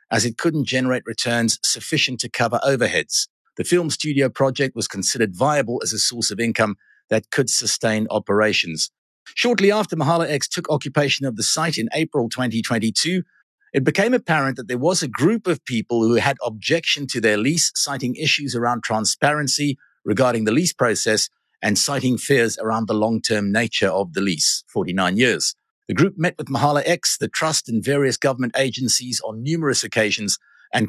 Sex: male